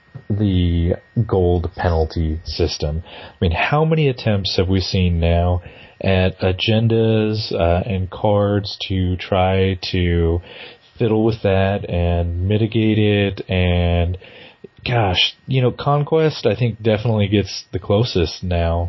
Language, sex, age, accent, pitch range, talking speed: English, male, 30-49, American, 90-115 Hz, 125 wpm